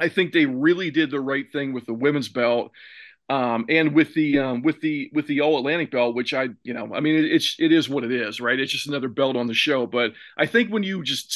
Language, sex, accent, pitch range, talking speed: English, male, American, 130-155 Hz, 265 wpm